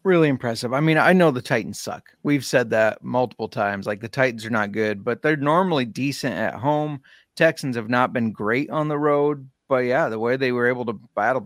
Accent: American